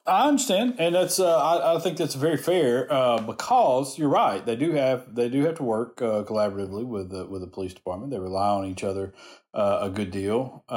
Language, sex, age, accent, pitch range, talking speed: English, male, 40-59, American, 95-130 Hz, 210 wpm